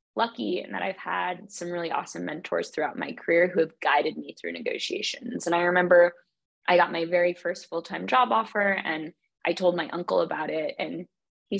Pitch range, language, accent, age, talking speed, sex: 175-195 Hz, English, American, 20-39, 195 wpm, female